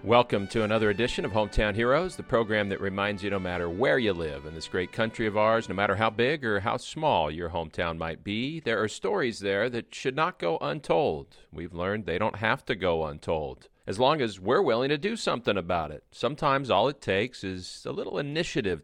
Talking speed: 220 wpm